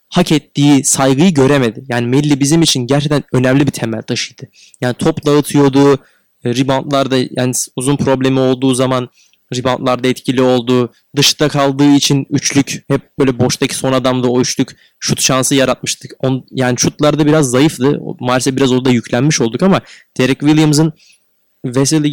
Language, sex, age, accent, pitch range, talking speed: Turkish, male, 20-39, native, 130-150 Hz, 140 wpm